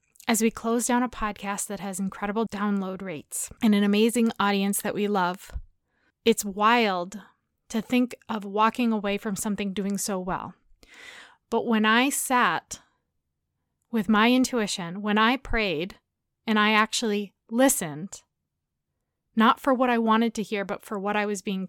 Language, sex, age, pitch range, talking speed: English, female, 20-39, 200-235 Hz, 160 wpm